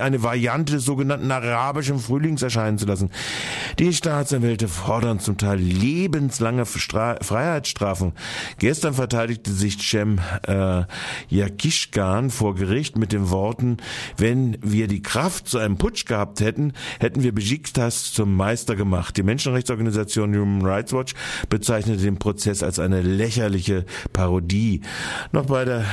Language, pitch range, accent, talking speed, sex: German, 100-130 Hz, German, 130 wpm, male